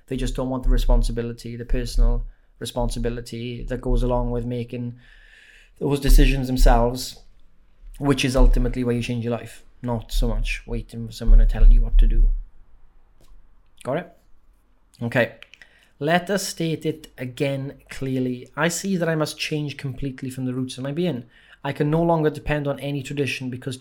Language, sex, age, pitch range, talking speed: English, male, 20-39, 120-140 Hz, 170 wpm